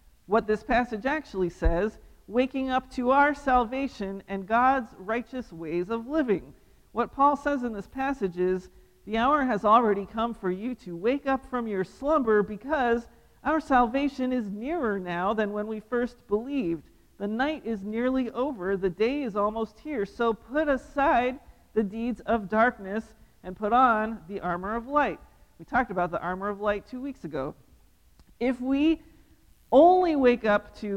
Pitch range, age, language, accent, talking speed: 190-250 Hz, 40-59, English, American, 170 wpm